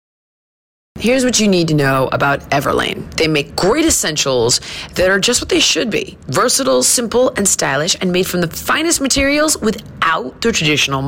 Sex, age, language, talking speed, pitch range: female, 30-49, English, 175 wpm, 165-255 Hz